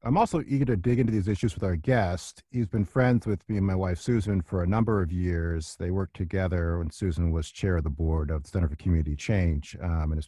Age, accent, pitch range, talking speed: 40-59, American, 90-125 Hz, 255 wpm